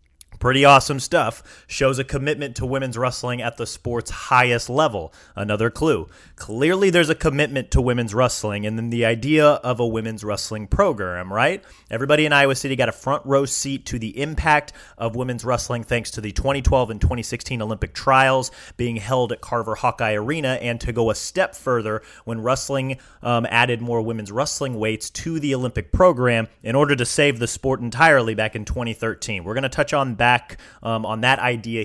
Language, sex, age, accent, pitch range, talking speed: English, male, 30-49, American, 115-135 Hz, 190 wpm